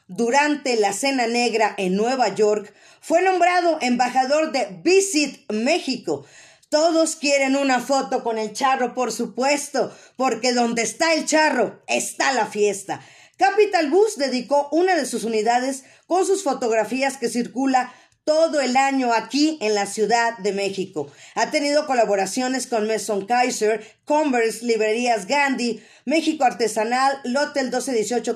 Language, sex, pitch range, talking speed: Spanish, female, 220-275 Hz, 135 wpm